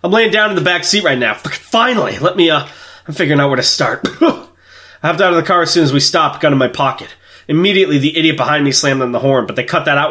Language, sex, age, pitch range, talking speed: English, male, 20-39, 120-160 Hz, 285 wpm